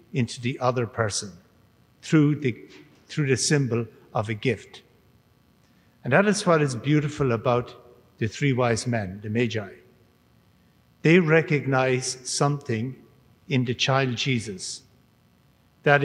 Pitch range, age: 125-155 Hz, 60-79